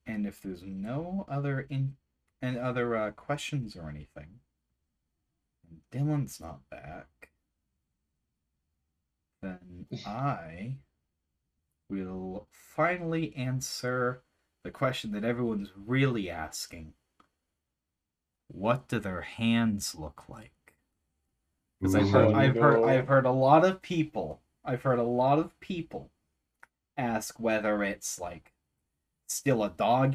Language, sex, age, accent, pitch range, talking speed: English, male, 30-49, American, 85-140 Hz, 115 wpm